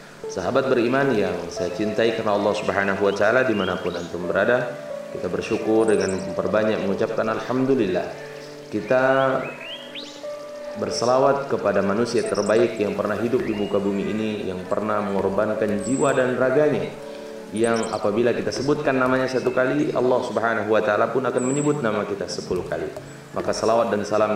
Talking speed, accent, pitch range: 145 wpm, native, 100-125 Hz